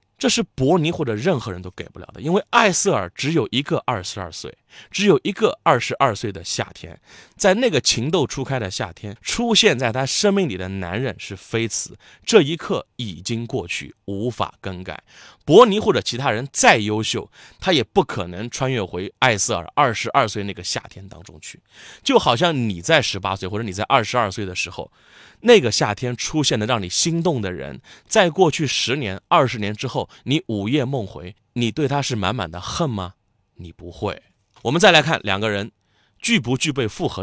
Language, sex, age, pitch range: Chinese, male, 20-39, 100-140 Hz